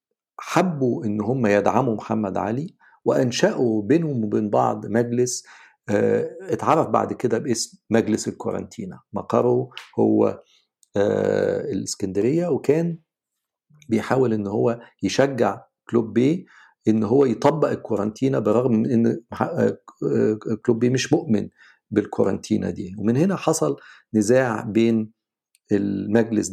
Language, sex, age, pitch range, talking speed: Arabic, male, 50-69, 110-160 Hz, 105 wpm